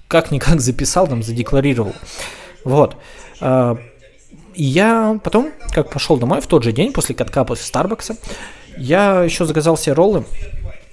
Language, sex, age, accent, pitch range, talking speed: Russian, male, 20-39, native, 125-165 Hz, 130 wpm